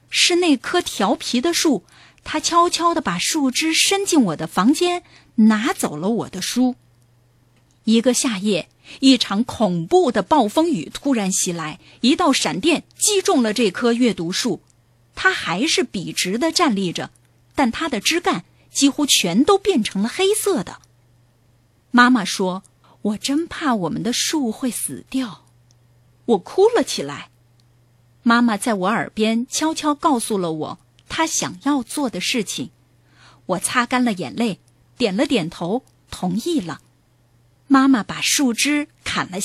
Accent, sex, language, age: native, female, Chinese, 30-49